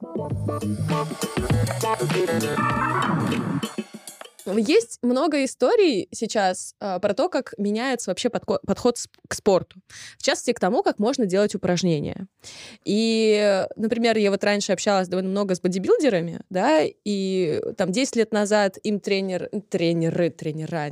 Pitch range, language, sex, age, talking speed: 180-235 Hz, Russian, female, 20-39, 120 wpm